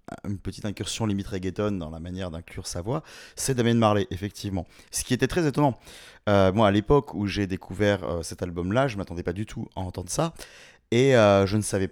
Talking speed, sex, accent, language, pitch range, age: 220 wpm, male, French, French, 90-115 Hz, 30-49